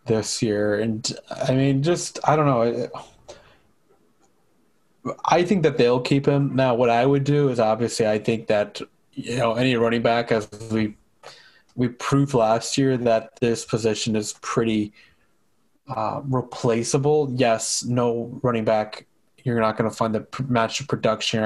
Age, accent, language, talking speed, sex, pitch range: 20-39, American, English, 160 wpm, male, 110-130 Hz